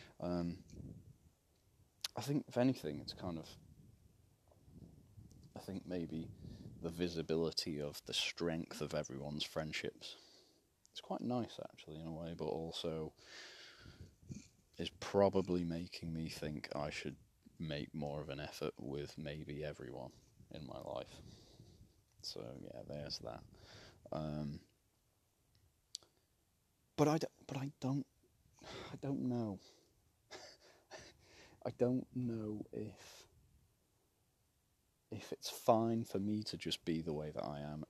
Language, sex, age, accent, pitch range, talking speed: English, male, 30-49, British, 80-105 Hz, 120 wpm